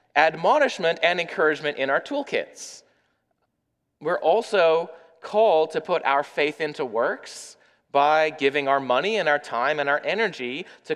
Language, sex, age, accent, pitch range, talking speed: English, male, 30-49, American, 145-220 Hz, 140 wpm